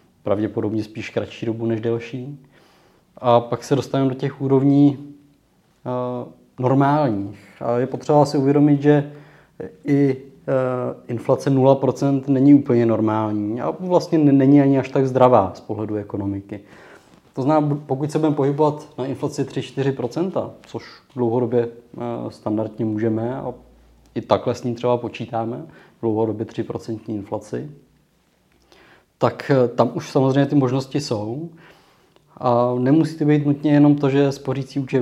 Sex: male